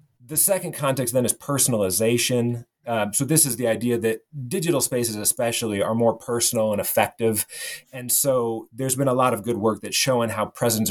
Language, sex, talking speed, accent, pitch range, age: English, male, 185 wpm, American, 110-135 Hz, 30-49